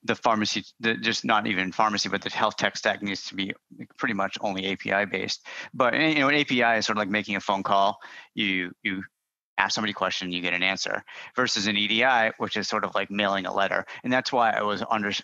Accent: American